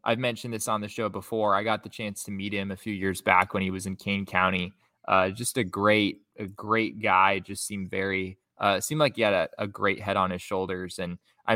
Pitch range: 100-115 Hz